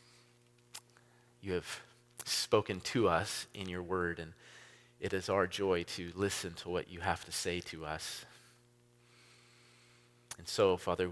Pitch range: 90-120 Hz